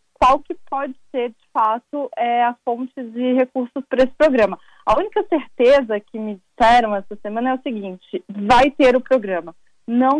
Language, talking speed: Portuguese, 175 wpm